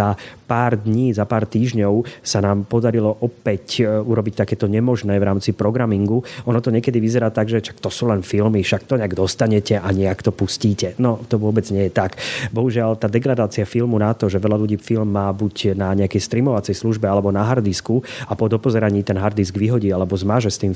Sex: male